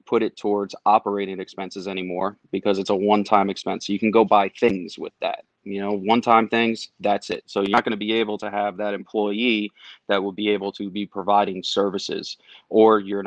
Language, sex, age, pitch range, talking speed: English, male, 30-49, 100-110 Hz, 210 wpm